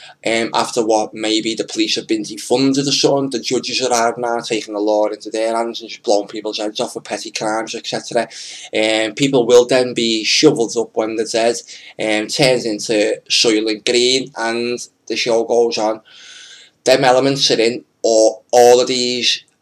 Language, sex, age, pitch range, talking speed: English, male, 20-39, 110-125 Hz, 185 wpm